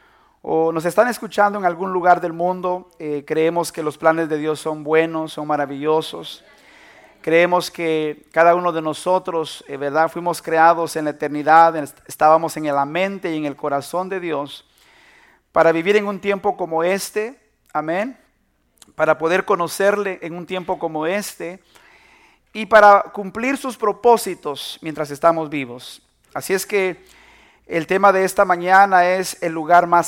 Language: Spanish